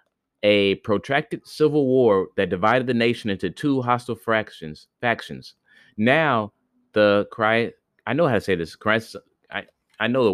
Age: 30-49